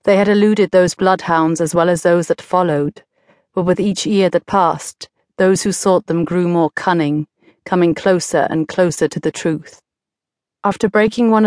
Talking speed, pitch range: 180 wpm, 170-205 Hz